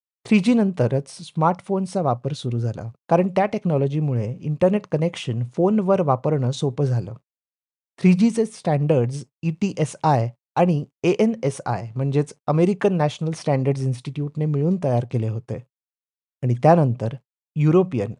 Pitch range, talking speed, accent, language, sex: 125-165 Hz, 110 wpm, native, Marathi, male